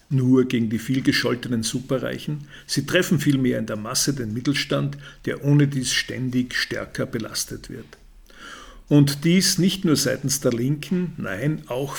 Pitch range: 130-150 Hz